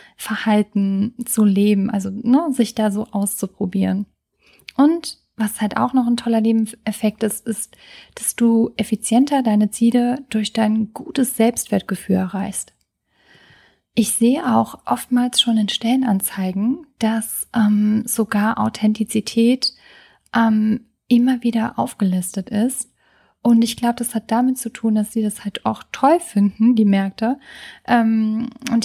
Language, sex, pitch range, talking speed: German, female, 210-240 Hz, 130 wpm